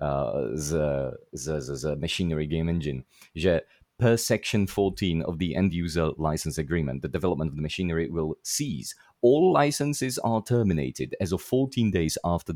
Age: 30-49